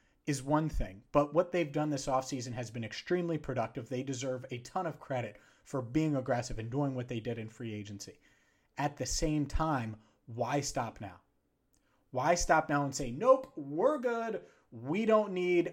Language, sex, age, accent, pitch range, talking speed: English, male, 30-49, American, 125-165 Hz, 185 wpm